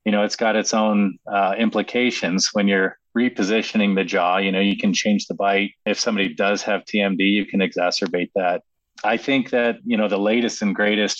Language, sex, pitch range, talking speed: English, male, 95-110 Hz, 205 wpm